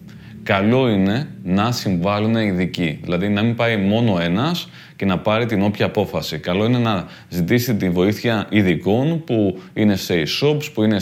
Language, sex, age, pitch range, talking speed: Greek, male, 30-49, 105-145 Hz, 165 wpm